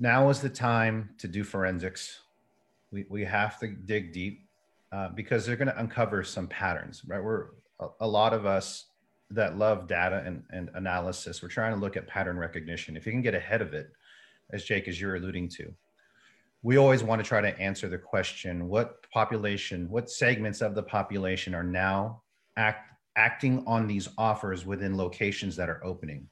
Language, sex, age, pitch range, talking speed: English, male, 30-49, 95-120 Hz, 180 wpm